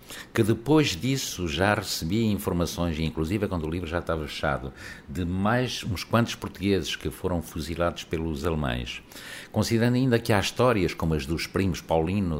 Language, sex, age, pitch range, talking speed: Portuguese, male, 60-79, 75-105 Hz, 165 wpm